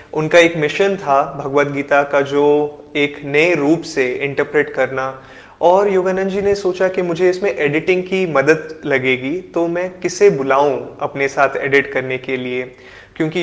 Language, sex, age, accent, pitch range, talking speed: Hindi, male, 20-39, native, 135-155 Hz, 160 wpm